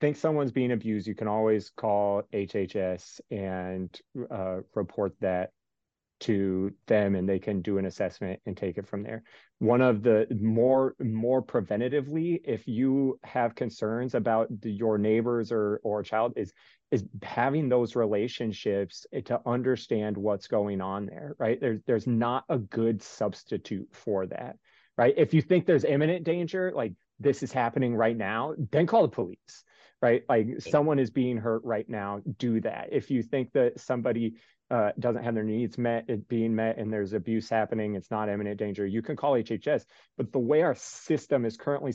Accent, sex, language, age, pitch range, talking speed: American, male, English, 30-49, 105-130 Hz, 175 wpm